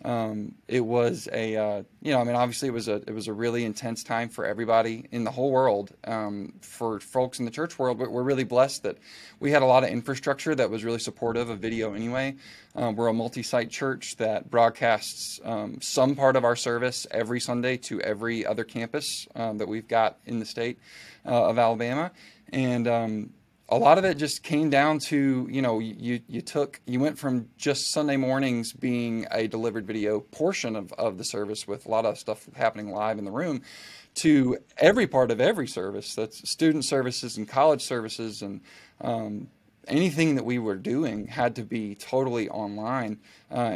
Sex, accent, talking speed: male, American, 200 wpm